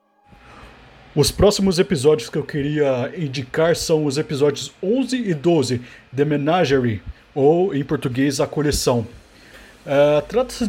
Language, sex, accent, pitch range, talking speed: Portuguese, male, Brazilian, 140-180 Hz, 125 wpm